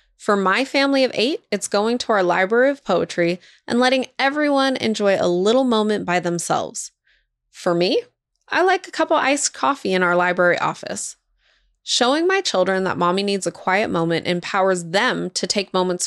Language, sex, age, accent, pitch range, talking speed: English, female, 20-39, American, 175-240 Hz, 180 wpm